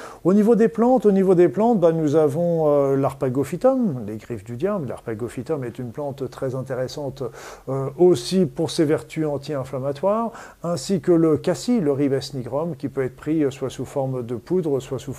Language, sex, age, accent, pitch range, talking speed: French, male, 50-69, French, 140-170 Hz, 185 wpm